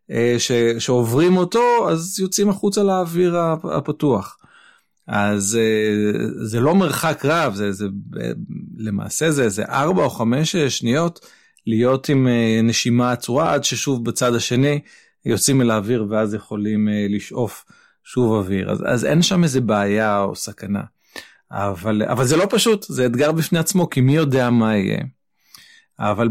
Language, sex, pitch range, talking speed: Hebrew, male, 115-175 Hz, 140 wpm